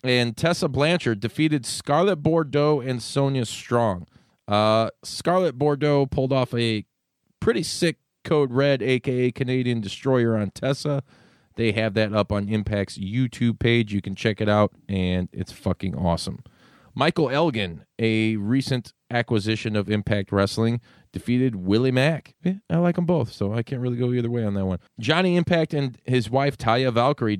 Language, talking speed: English, 160 wpm